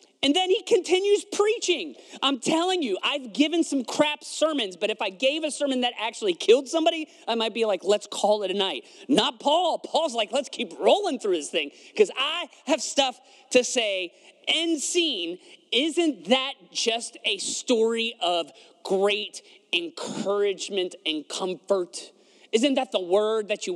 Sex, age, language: male, 30-49, English